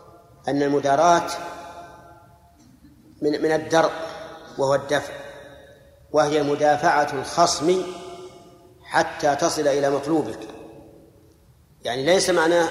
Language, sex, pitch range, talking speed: Arabic, male, 140-170 Hz, 80 wpm